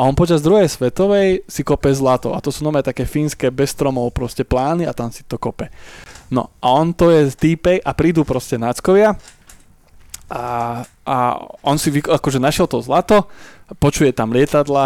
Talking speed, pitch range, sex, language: 180 wpm, 125-150 Hz, male, Slovak